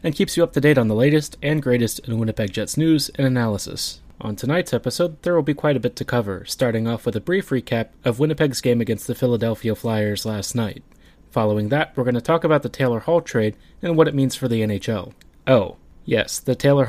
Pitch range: 110-140 Hz